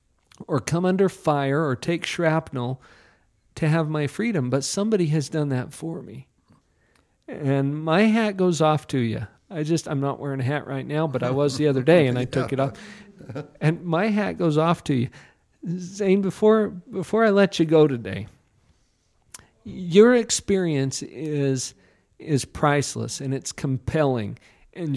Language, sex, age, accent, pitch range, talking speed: English, male, 50-69, American, 135-175 Hz, 165 wpm